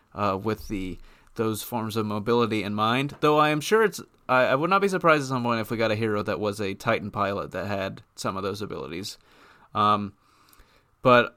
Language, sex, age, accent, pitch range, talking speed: English, male, 30-49, American, 105-125 Hz, 215 wpm